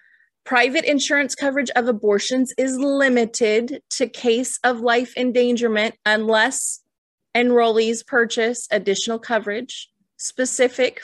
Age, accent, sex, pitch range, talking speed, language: 20-39, American, female, 210-275 Hz, 100 wpm, English